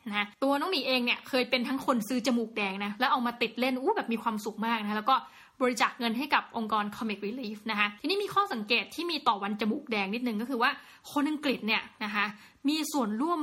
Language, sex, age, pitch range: Thai, female, 20-39, 215-275 Hz